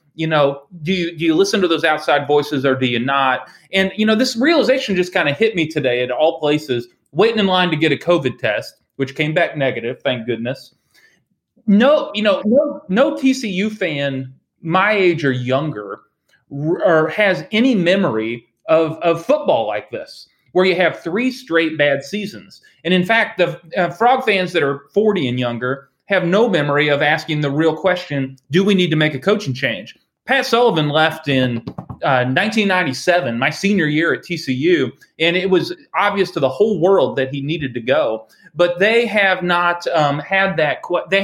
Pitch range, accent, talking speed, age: 140-195 Hz, American, 190 wpm, 30-49